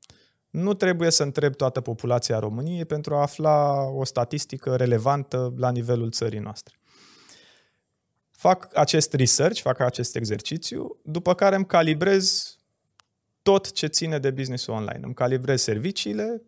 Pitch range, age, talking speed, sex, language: 115-150 Hz, 20-39, 130 wpm, male, Romanian